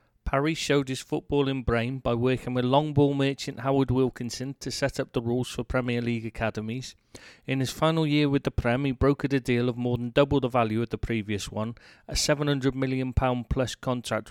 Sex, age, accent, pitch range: male, 30-49, British, 120-140 Hz